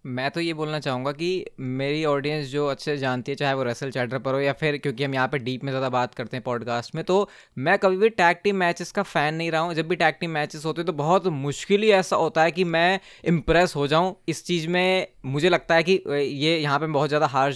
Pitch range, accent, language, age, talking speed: 140-175 Hz, native, Hindi, 20-39, 255 wpm